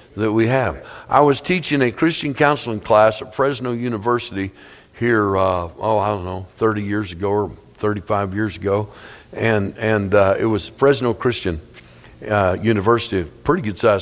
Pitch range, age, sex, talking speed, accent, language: 105-135 Hz, 50-69, male, 165 wpm, American, English